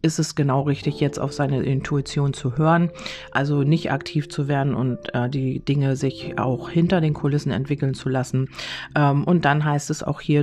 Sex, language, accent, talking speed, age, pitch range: female, German, German, 195 wpm, 40-59, 135-150 Hz